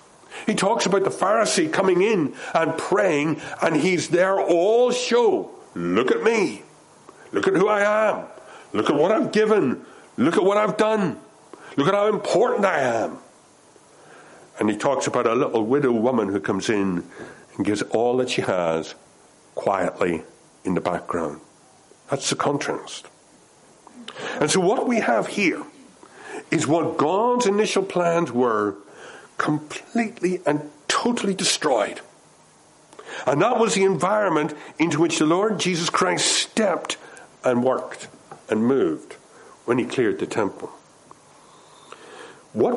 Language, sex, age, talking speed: English, male, 60-79, 140 wpm